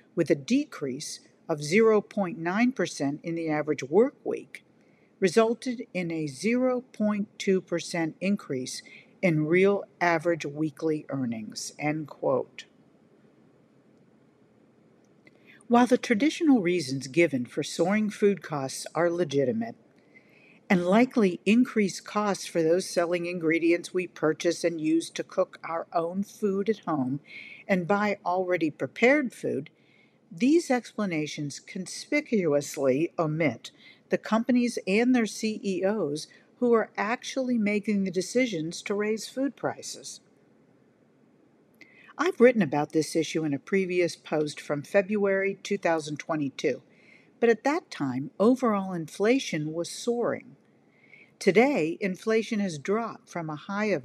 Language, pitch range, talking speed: English, 165-225 Hz, 115 wpm